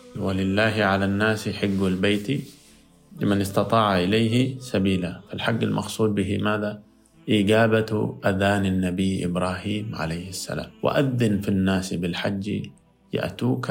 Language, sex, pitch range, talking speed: Arabic, male, 95-115 Hz, 105 wpm